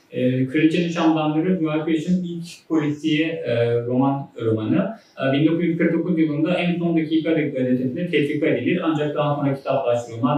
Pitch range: 125-150 Hz